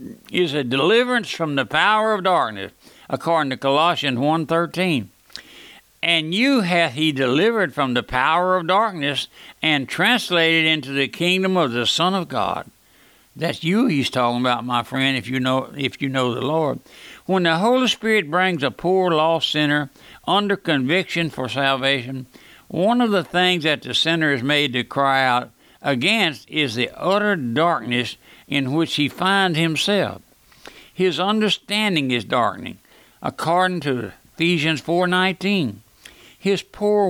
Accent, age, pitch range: American, 60-79, 135-180 Hz